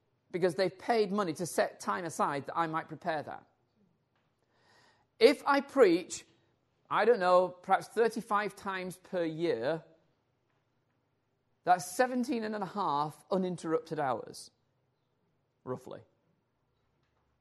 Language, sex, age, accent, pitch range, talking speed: Danish, male, 40-59, British, 130-185 Hz, 110 wpm